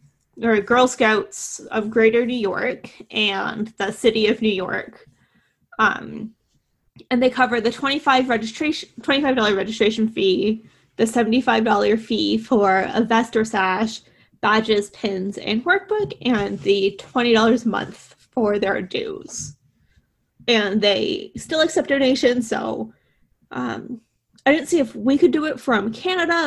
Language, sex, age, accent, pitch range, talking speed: English, female, 20-39, American, 210-260 Hz, 135 wpm